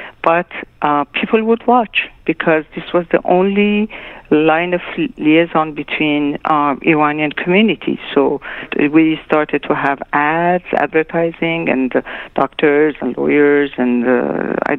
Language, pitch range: English, 145-190 Hz